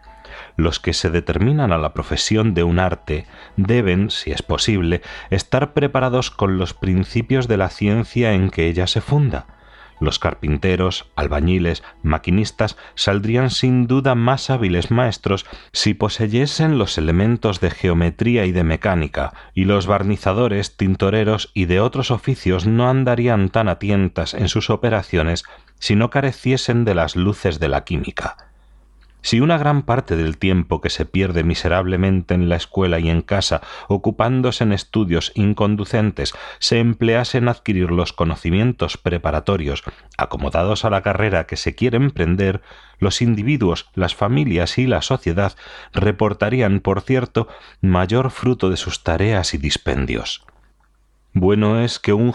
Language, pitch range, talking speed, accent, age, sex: Spanish, 85-120 Hz, 145 wpm, Spanish, 30-49, male